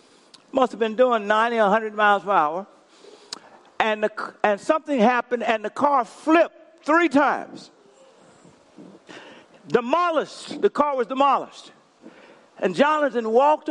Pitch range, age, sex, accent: 230-315 Hz, 50-69, male, American